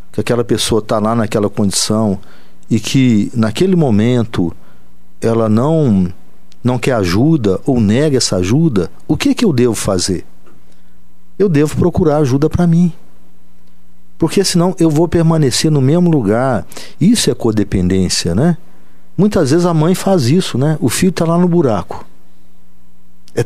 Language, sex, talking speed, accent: Portuguese, male, 150 wpm, Brazilian